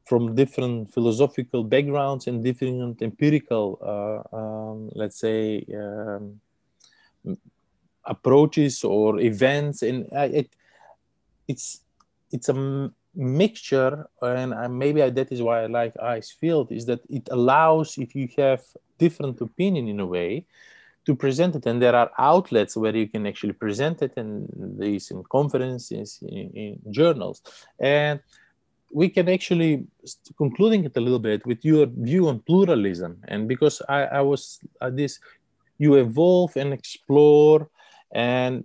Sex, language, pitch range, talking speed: male, English, 115-145 Hz, 140 wpm